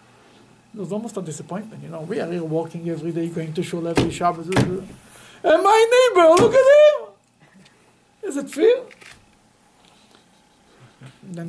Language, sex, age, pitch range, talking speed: English, male, 60-79, 175-275 Hz, 145 wpm